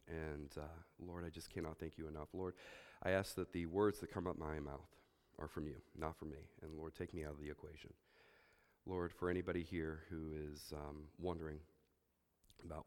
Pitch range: 80-95 Hz